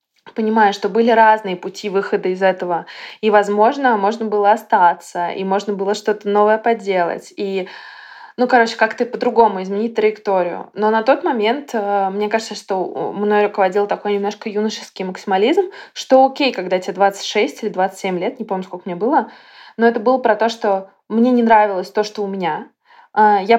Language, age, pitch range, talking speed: Russian, 20-39, 205-235 Hz, 170 wpm